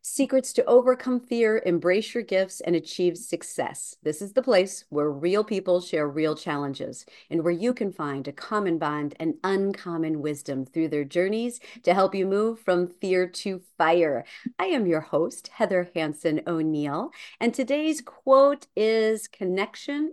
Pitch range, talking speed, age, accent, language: 160-230 Hz, 160 wpm, 50-69, American, English